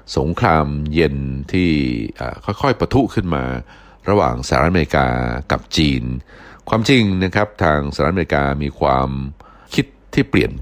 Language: Thai